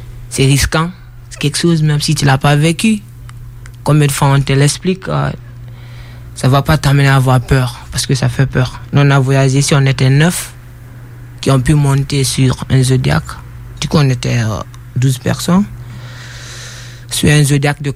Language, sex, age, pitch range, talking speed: French, male, 20-39, 120-140 Hz, 195 wpm